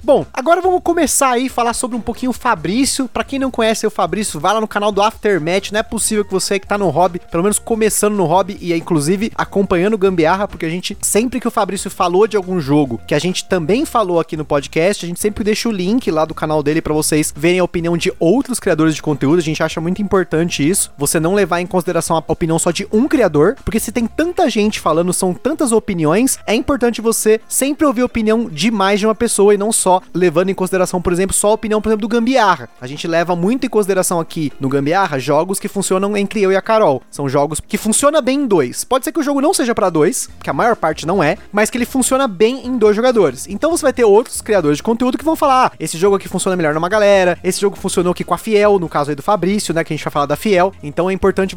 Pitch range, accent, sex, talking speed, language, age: 175-235 Hz, Brazilian, male, 260 wpm, Portuguese, 20-39